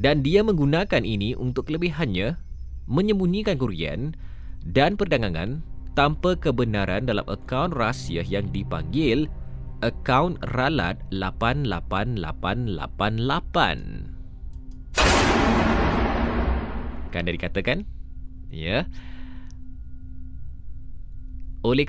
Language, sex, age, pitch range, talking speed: Malay, male, 20-39, 80-115 Hz, 65 wpm